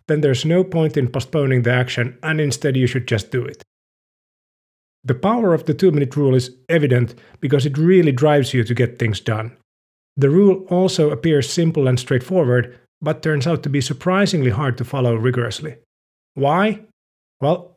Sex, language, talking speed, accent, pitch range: male, English, 170 wpm, Finnish, 120-155 Hz